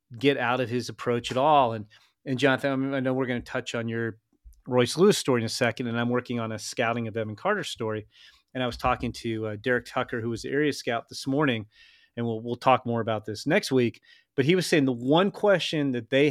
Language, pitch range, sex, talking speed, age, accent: English, 120-150 Hz, male, 255 wpm, 30-49, American